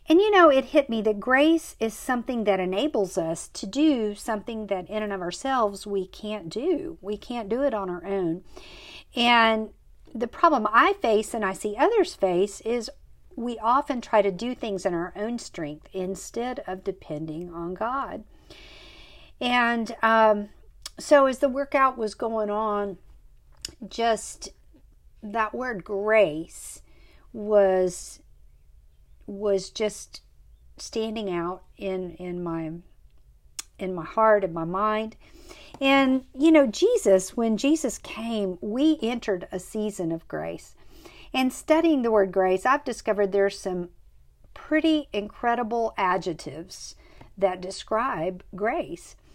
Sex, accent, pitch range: female, American, 190-255 Hz